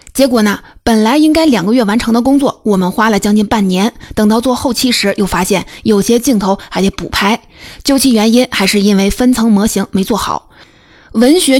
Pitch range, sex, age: 195-250 Hz, female, 20-39